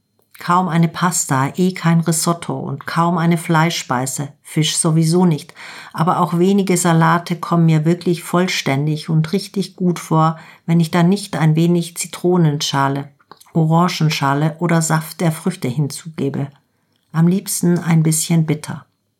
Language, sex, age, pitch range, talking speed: German, female, 50-69, 155-175 Hz, 135 wpm